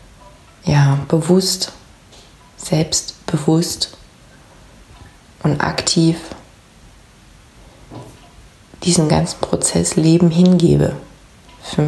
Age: 30-49